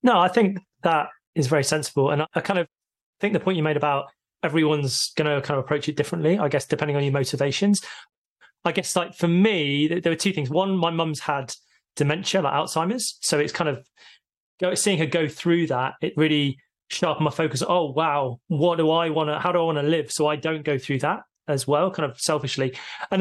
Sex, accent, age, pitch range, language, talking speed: male, British, 30-49, 145-175 Hz, English, 220 wpm